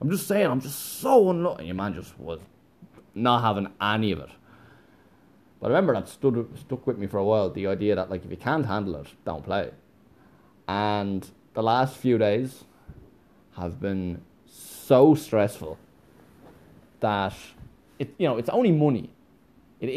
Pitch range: 90-120 Hz